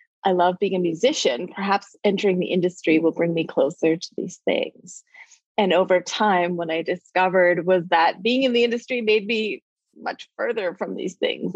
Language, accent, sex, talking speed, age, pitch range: English, American, female, 180 wpm, 20-39, 175-225 Hz